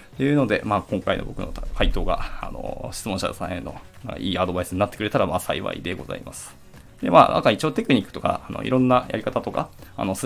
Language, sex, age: Japanese, male, 20-39